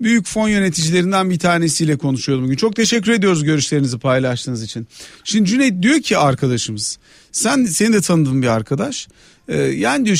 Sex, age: male, 40-59